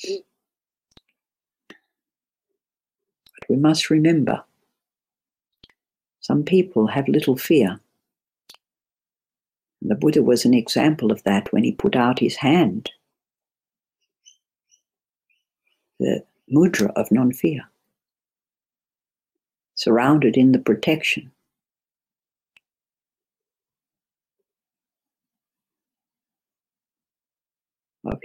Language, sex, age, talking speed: English, female, 60-79, 65 wpm